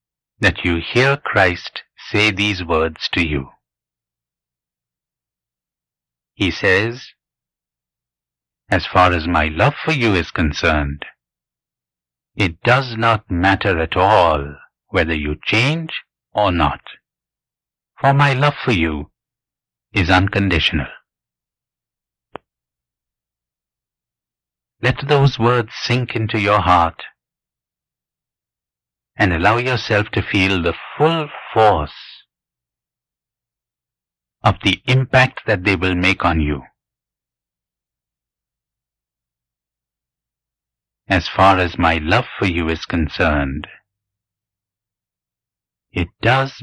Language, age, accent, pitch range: English, 60-79, Indian, 75-110 Hz